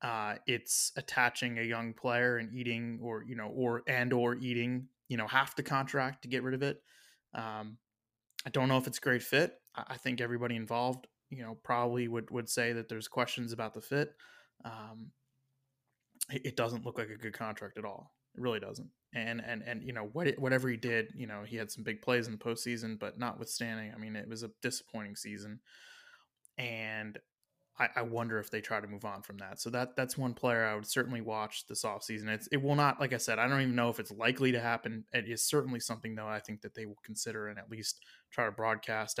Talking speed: 225 wpm